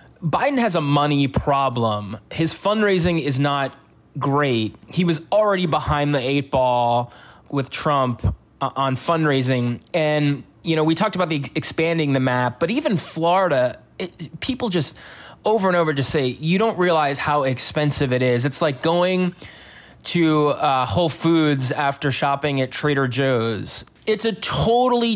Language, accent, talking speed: English, American, 150 wpm